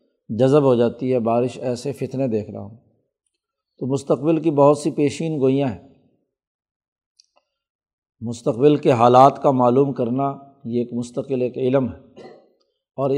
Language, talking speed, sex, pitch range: Urdu, 140 wpm, male, 120-140 Hz